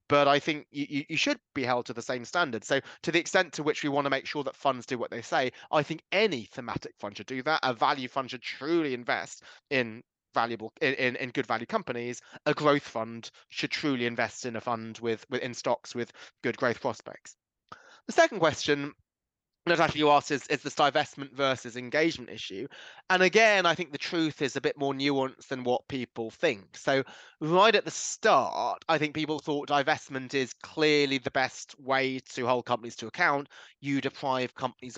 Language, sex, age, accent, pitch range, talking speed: English, male, 20-39, British, 120-150 Hz, 205 wpm